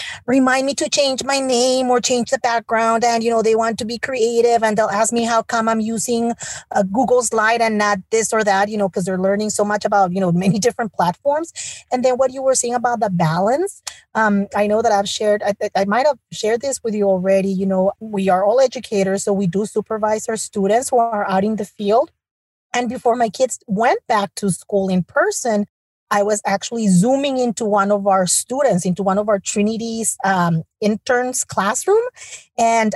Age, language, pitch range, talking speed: 30-49, English, 205-265 Hz, 215 wpm